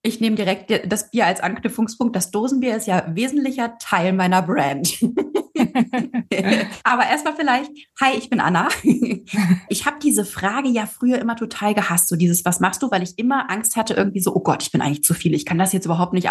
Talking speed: 205 wpm